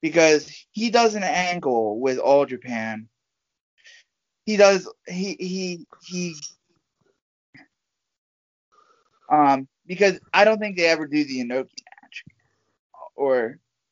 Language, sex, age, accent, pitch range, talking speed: English, male, 30-49, American, 125-200 Hz, 110 wpm